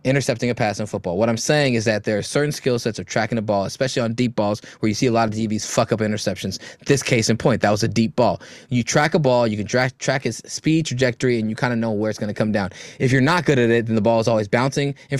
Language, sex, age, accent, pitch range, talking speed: English, male, 20-39, American, 115-165 Hz, 305 wpm